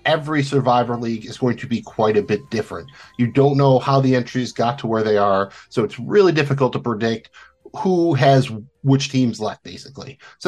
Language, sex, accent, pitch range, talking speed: English, male, American, 110-140 Hz, 200 wpm